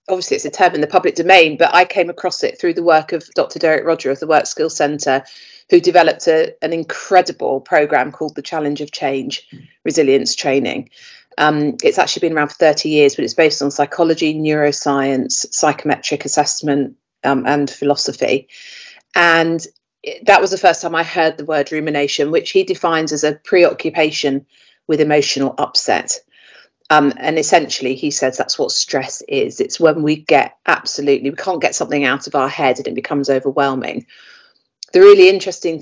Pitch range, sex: 145-175 Hz, female